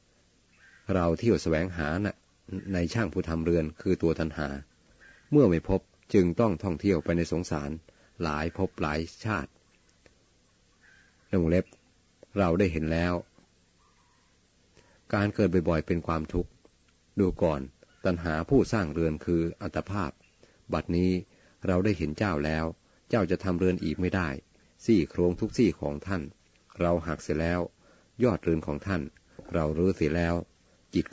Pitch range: 80-95 Hz